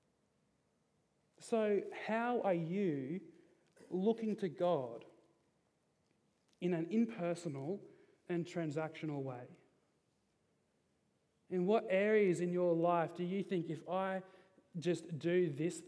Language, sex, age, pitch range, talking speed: English, male, 30-49, 160-180 Hz, 100 wpm